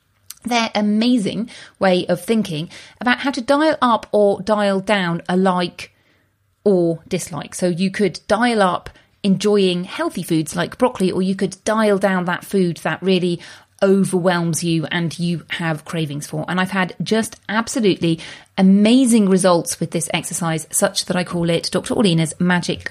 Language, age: English, 30-49